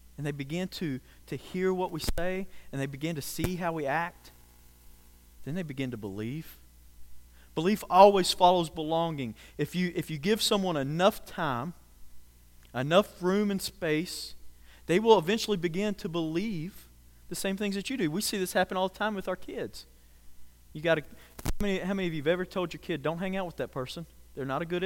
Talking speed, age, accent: 200 wpm, 40-59, American